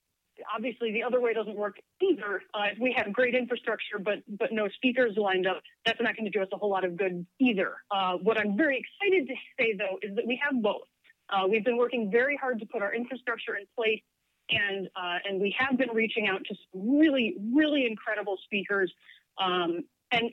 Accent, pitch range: American, 200-265 Hz